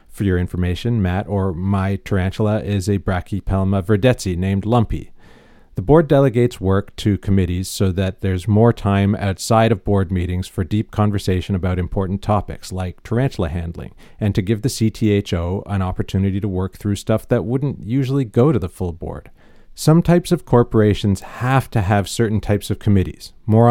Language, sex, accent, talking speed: English, male, American, 170 wpm